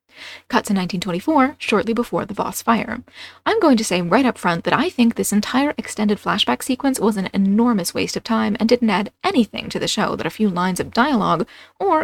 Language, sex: English, female